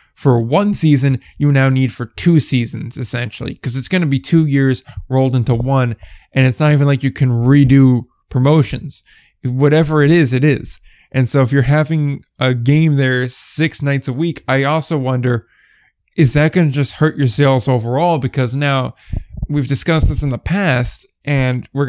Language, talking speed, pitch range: English, 185 wpm, 125-145 Hz